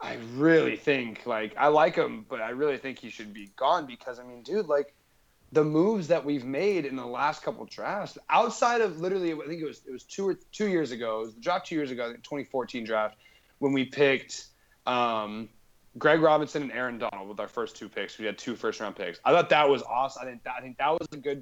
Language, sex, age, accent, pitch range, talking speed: English, male, 20-39, American, 130-165 Hz, 245 wpm